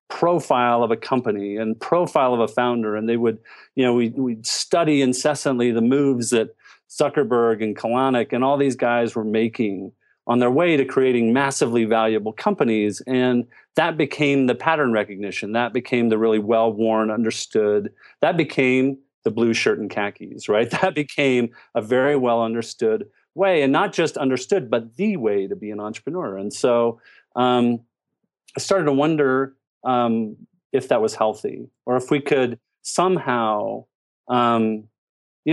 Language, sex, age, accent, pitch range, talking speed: English, male, 40-59, American, 110-140 Hz, 160 wpm